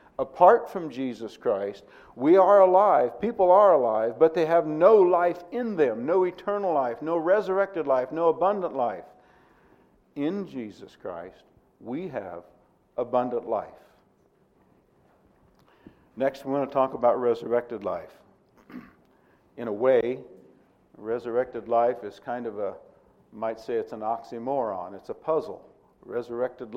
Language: English